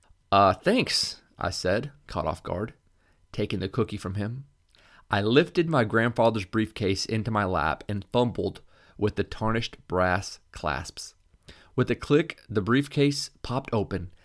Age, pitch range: 30-49, 90-120 Hz